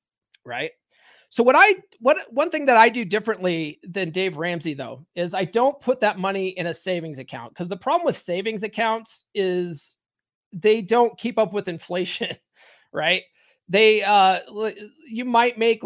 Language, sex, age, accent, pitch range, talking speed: English, male, 30-49, American, 180-225 Hz, 165 wpm